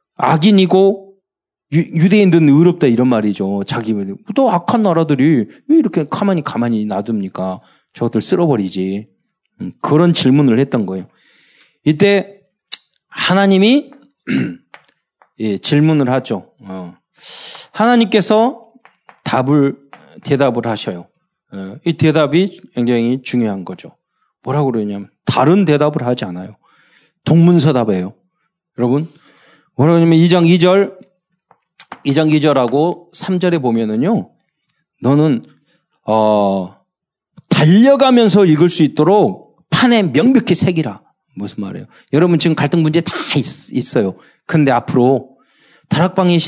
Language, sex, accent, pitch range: Korean, male, native, 120-185 Hz